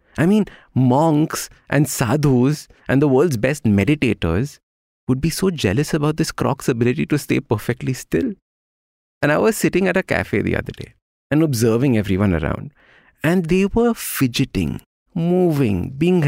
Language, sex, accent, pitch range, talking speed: English, male, Indian, 95-145 Hz, 155 wpm